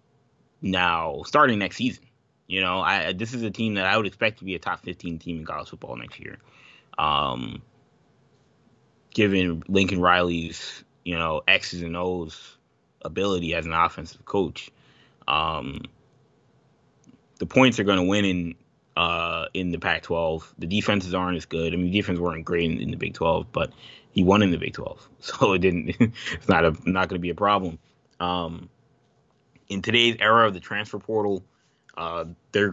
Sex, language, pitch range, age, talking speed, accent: male, English, 90-115 Hz, 20-39, 180 wpm, American